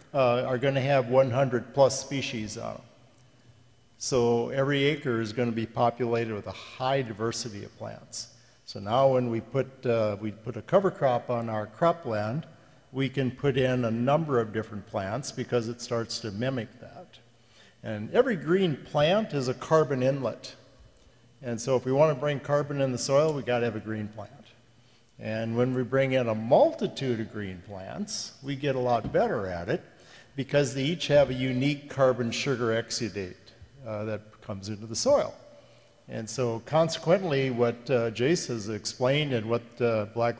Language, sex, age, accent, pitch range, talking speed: English, male, 50-69, American, 115-140 Hz, 175 wpm